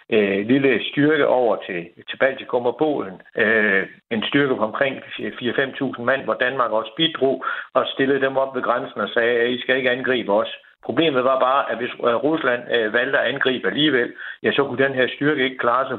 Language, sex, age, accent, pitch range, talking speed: Danish, male, 60-79, native, 125-145 Hz, 190 wpm